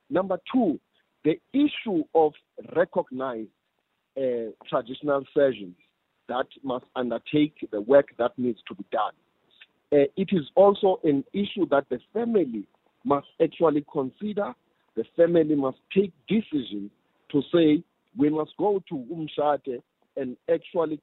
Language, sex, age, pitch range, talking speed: English, male, 50-69, 130-185 Hz, 130 wpm